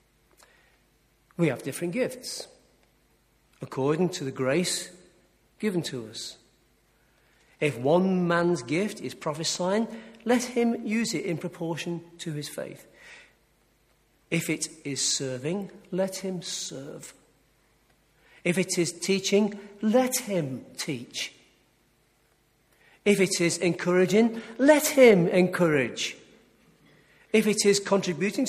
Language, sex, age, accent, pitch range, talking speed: English, male, 40-59, British, 140-200 Hz, 105 wpm